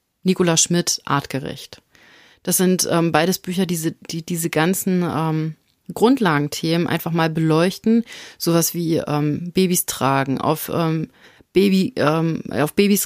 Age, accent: 30-49, German